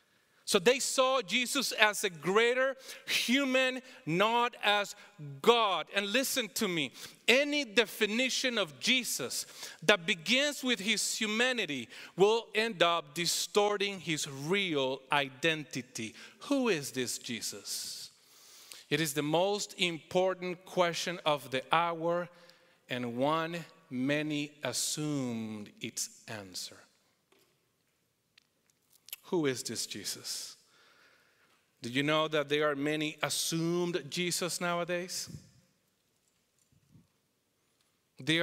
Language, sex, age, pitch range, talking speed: English, male, 40-59, 150-205 Hz, 100 wpm